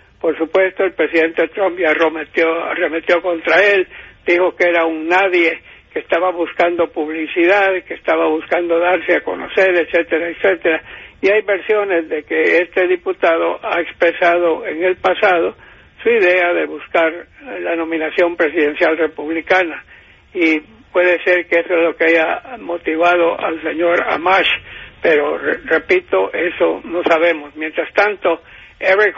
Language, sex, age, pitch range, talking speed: English, male, 60-79, 165-185 Hz, 140 wpm